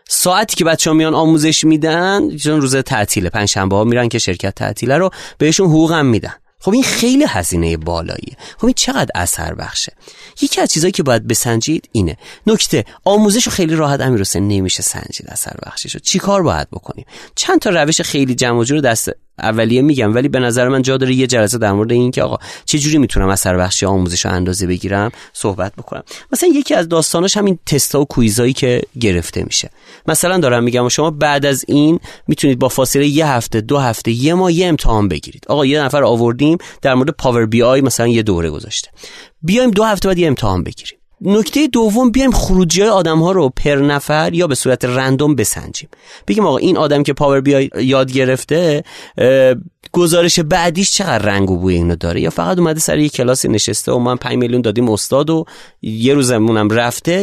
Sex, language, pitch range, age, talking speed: male, Persian, 115-165 Hz, 30-49, 190 wpm